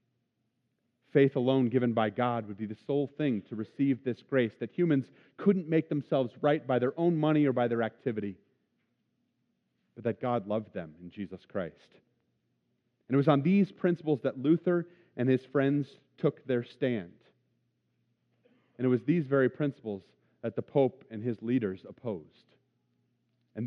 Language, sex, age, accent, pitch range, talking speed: English, male, 40-59, American, 120-150 Hz, 160 wpm